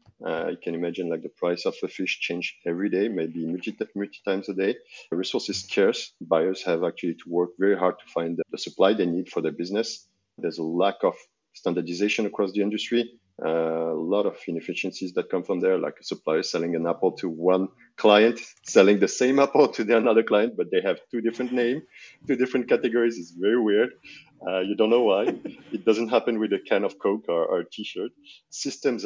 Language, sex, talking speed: English, male, 215 wpm